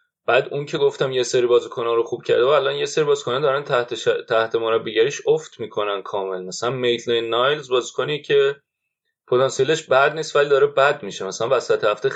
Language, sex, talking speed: Persian, male, 185 wpm